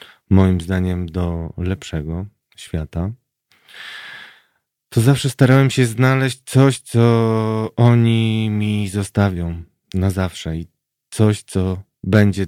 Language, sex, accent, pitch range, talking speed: Polish, male, native, 90-110 Hz, 100 wpm